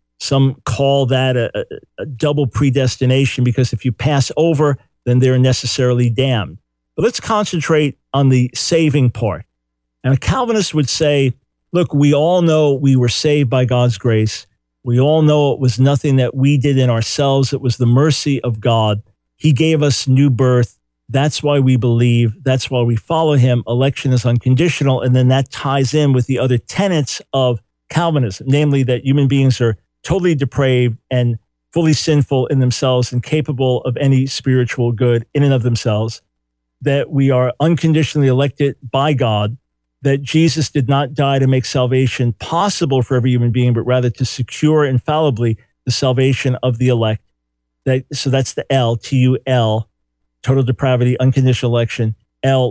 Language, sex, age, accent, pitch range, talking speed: English, male, 50-69, American, 120-140 Hz, 165 wpm